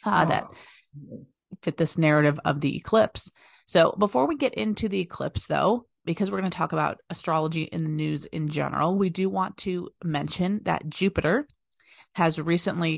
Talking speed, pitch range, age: 170 wpm, 160-195 Hz, 30-49